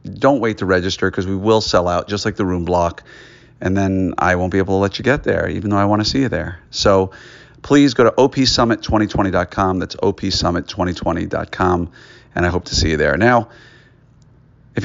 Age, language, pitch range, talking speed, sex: 40-59, English, 90-115 Hz, 200 wpm, male